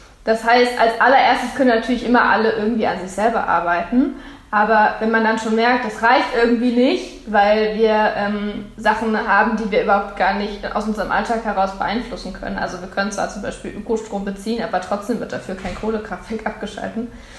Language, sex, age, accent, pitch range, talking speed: German, female, 20-39, German, 205-235 Hz, 185 wpm